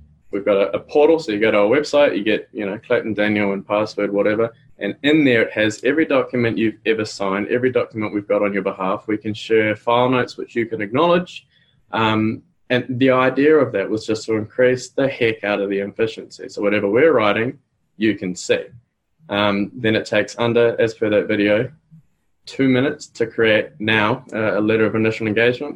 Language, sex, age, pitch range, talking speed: English, male, 20-39, 110-145 Hz, 205 wpm